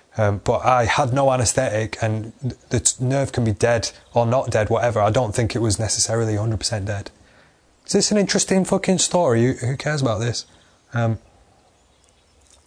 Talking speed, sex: 165 wpm, male